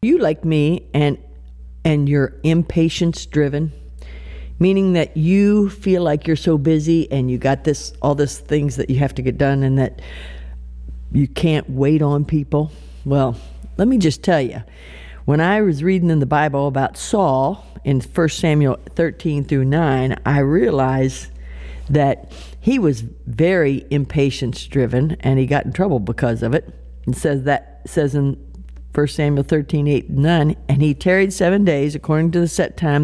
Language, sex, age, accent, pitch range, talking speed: English, female, 60-79, American, 130-170 Hz, 170 wpm